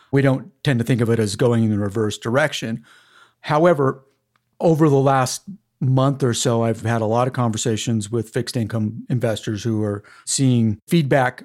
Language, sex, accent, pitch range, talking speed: English, male, American, 115-140 Hz, 180 wpm